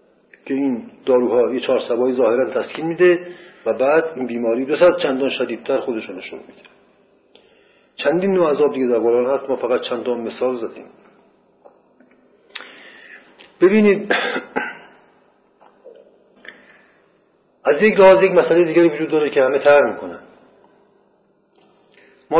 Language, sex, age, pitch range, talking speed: Persian, male, 50-69, 140-175 Hz, 115 wpm